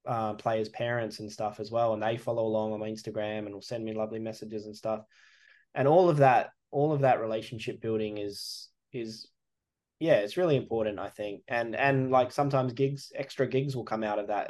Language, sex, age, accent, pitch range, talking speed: English, male, 10-29, Australian, 105-115 Hz, 210 wpm